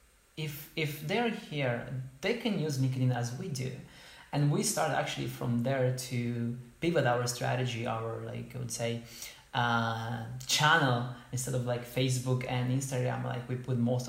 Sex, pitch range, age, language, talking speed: male, 120-130 Hz, 20-39, English, 160 wpm